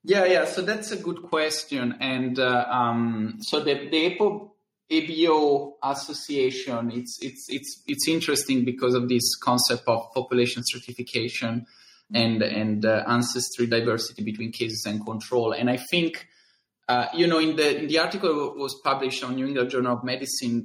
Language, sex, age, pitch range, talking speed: English, male, 20-39, 115-140 Hz, 165 wpm